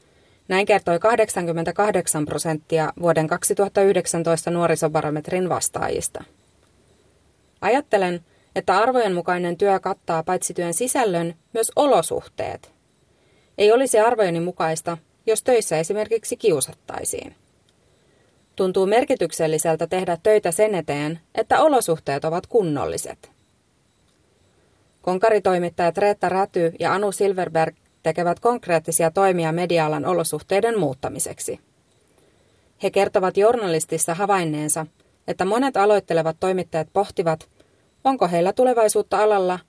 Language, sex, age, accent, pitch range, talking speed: Finnish, female, 30-49, native, 165-210 Hz, 95 wpm